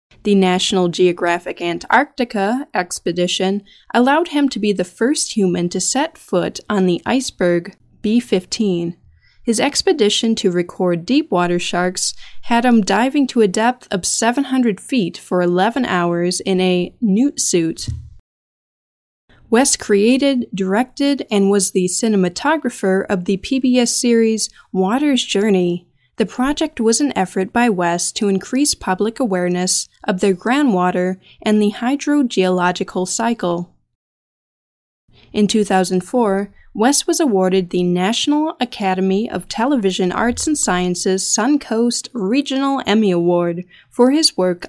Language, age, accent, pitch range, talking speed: English, 20-39, American, 180-245 Hz, 125 wpm